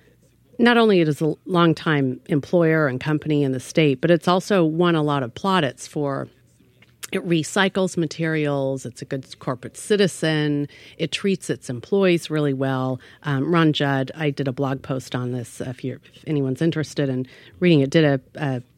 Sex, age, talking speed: female, 40-59, 185 wpm